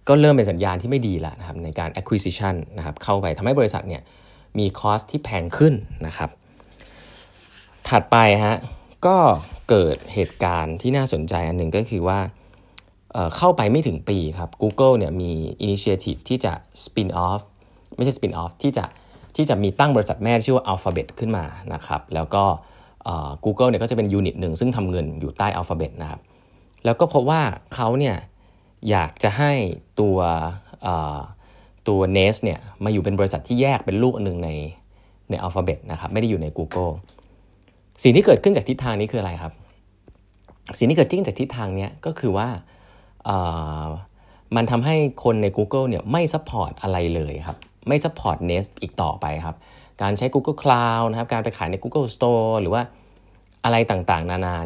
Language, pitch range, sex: Thai, 85-115 Hz, male